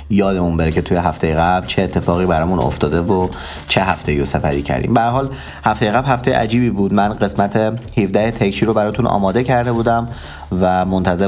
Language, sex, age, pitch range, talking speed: Persian, male, 30-49, 90-115 Hz, 175 wpm